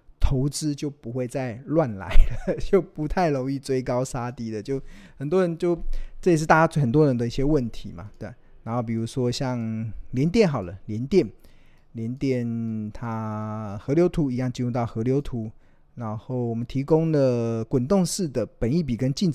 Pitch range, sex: 115-155 Hz, male